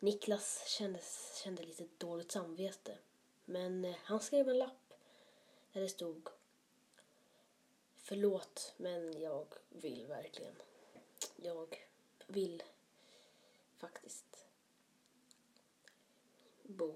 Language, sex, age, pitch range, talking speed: Swedish, female, 20-39, 190-265 Hz, 80 wpm